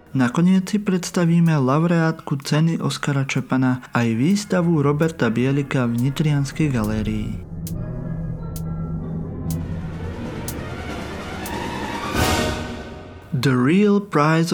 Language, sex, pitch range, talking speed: Slovak, male, 130-175 Hz, 75 wpm